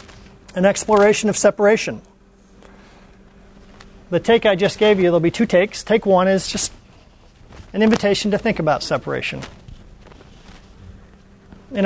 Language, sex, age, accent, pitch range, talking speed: English, male, 40-59, American, 165-215 Hz, 125 wpm